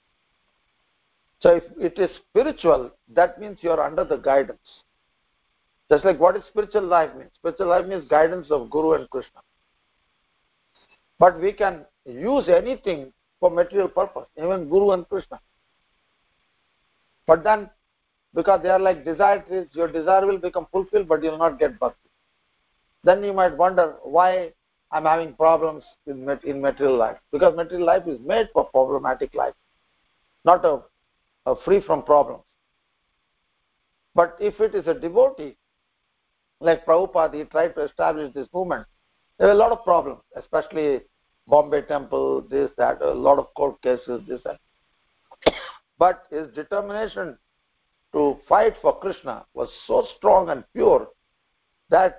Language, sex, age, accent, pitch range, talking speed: English, male, 50-69, Indian, 155-200 Hz, 150 wpm